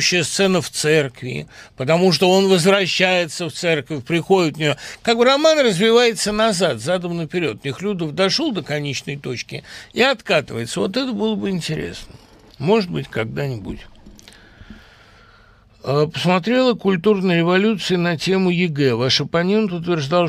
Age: 60-79